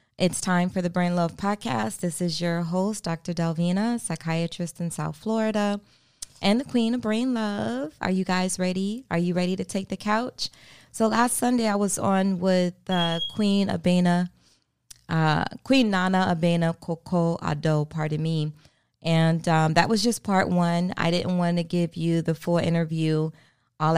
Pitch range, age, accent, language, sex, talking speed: 155-180 Hz, 20-39, American, English, female, 175 wpm